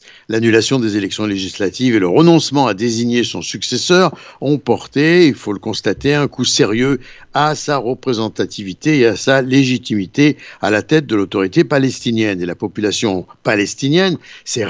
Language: Italian